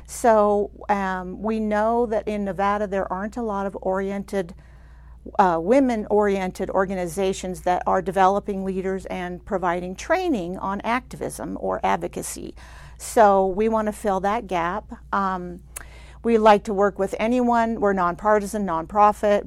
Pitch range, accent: 185-225 Hz, American